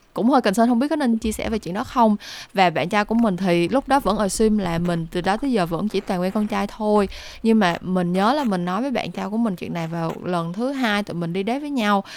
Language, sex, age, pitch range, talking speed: Vietnamese, female, 10-29, 185-240 Hz, 305 wpm